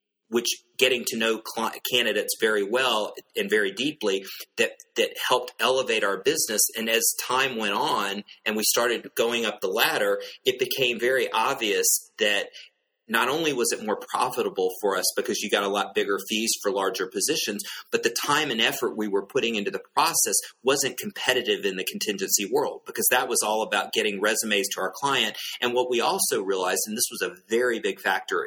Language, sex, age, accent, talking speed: English, male, 30-49, American, 190 wpm